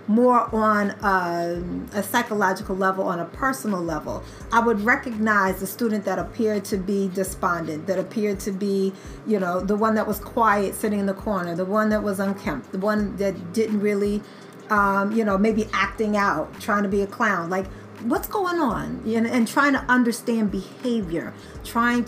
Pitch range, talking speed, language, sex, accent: 190-220 Hz, 180 wpm, English, female, American